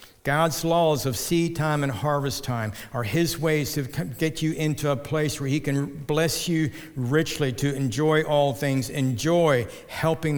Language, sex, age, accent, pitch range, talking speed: English, male, 60-79, American, 135-165 Hz, 170 wpm